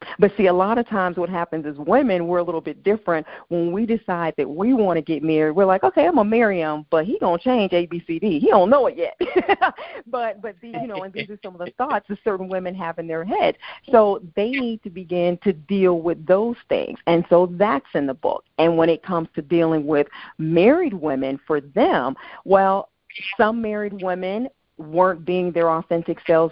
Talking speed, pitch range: 230 wpm, 160-200 Hz